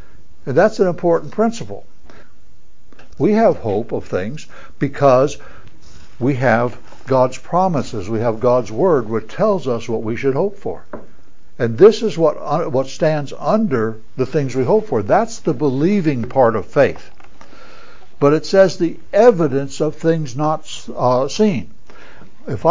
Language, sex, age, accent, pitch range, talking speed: English, male, 60-79, American, 125-170 Hz, 150 wpm